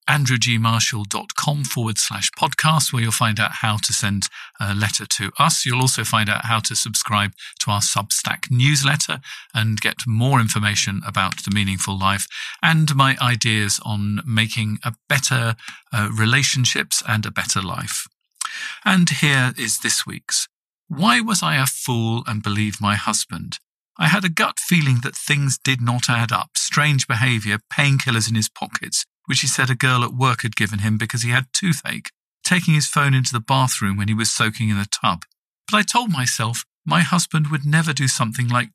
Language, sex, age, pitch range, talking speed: English, male, 50-69, 110-145 Hz, 180 wpm